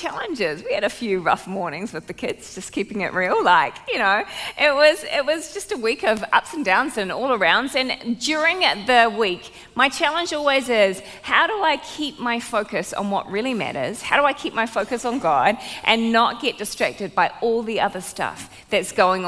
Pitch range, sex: 195-270 Hz, female